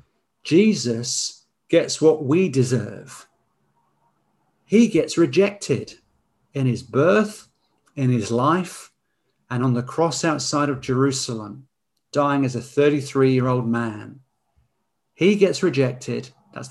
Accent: British